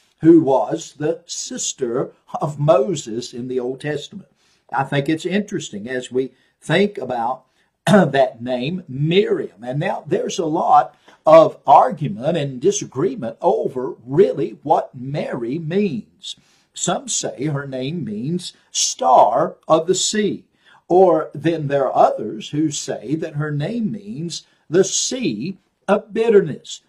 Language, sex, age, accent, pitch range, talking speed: English, male, 50-69, American, 145-195 Hz, 130 wpm